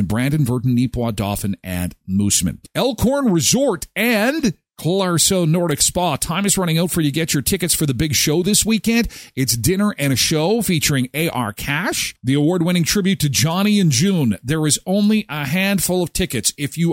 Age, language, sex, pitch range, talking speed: 40-59, English, male, 115-175 Hz, 185 wpm